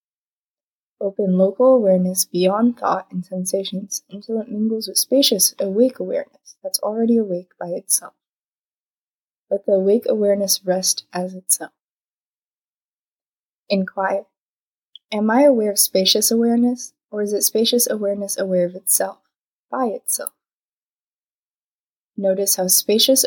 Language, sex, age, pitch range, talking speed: English, female, 20-39, 185-225 Hz, 120 wpm